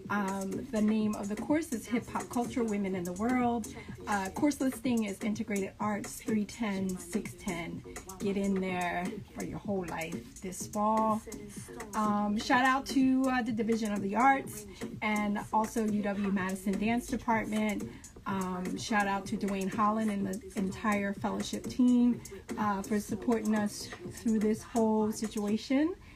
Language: English